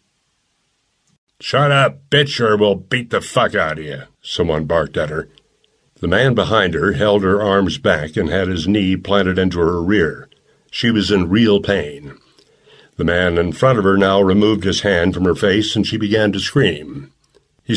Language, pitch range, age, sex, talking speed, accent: English, 95-140 Hz, 60-79, male, 185 wpm, American